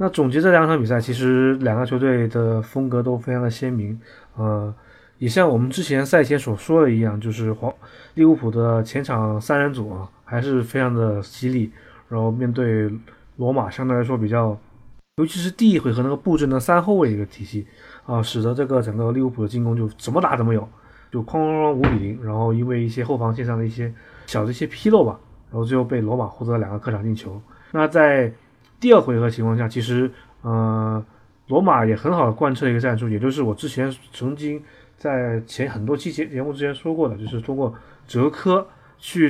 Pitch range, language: 115-130 Hz, Chinese